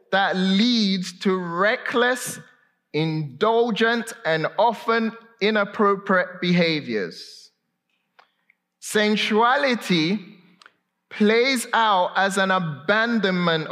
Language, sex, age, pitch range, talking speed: English, male, 30-49, 160-205 Hz, 65 wpm